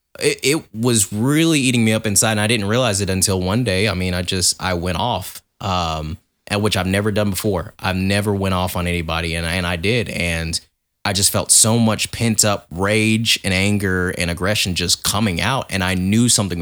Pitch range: 85-100 Hz